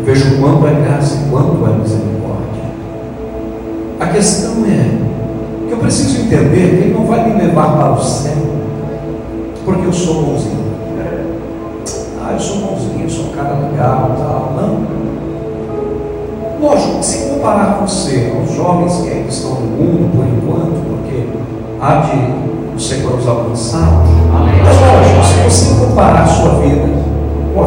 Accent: Brazilian